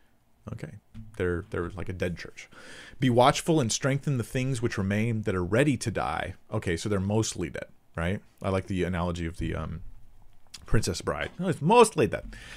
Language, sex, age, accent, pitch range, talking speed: English, male, 40-59, American, 90-115 Hz, 180 wpm